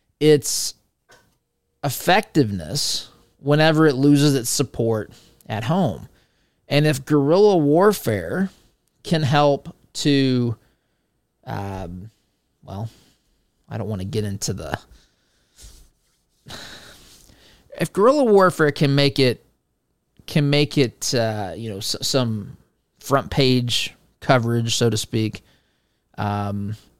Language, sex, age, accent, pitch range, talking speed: English, male, 20-39, American, 110-140 Hz, 100 wpm